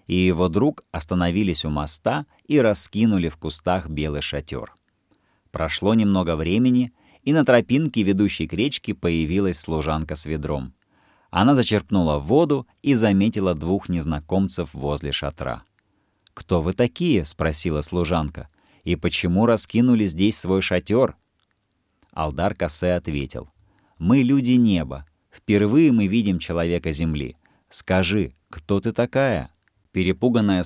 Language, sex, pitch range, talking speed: Russian, male, 80-110 Hz, 120 wpm